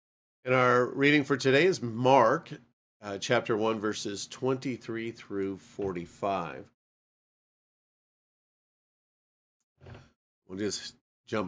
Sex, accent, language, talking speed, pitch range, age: male, American, English, 90 wpm, 125-165 Hz, 40-59